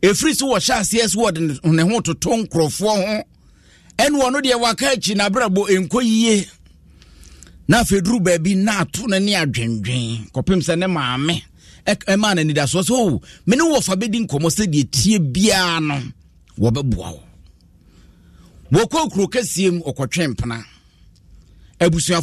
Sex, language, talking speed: male, English, 115 wpm